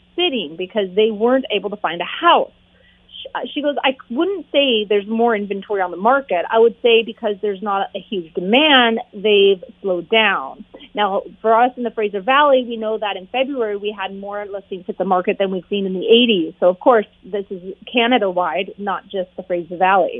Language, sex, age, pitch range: English, female, 30-49, 195-245 Hz